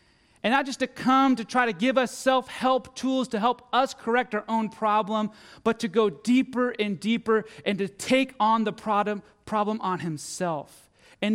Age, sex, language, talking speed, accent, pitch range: 30-49, male, English, 180 wpm, American, 140-215 Hz